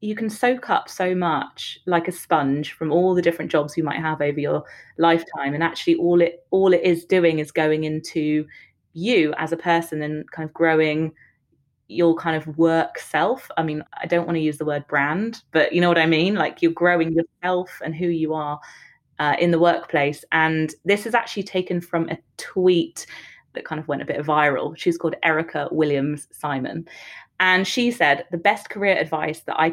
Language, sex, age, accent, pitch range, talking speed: English, female, 20-39, British, 155-180 Hz, 205 wpm